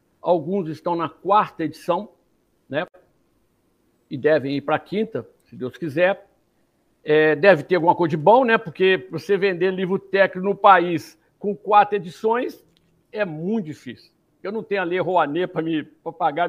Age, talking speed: 60-79, 160 wpm